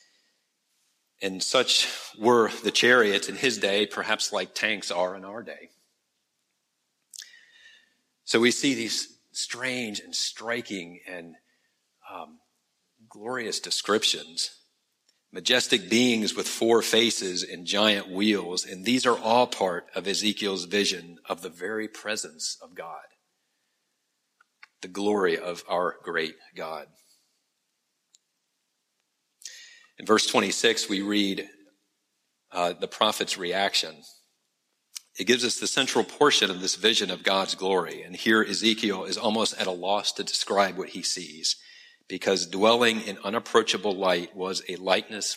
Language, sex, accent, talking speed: English, male, American, 125 wpm